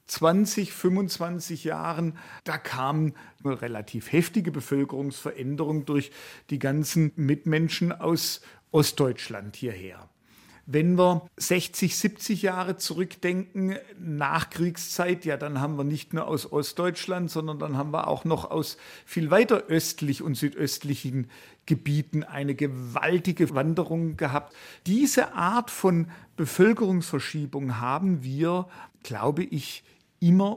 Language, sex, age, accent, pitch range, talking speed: German, male, 50-69, German, 140-170 Hz, 115 wpm